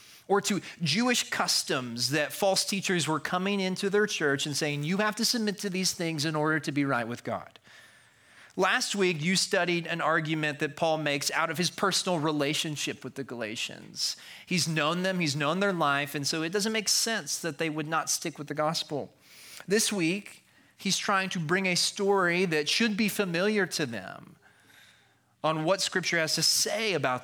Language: English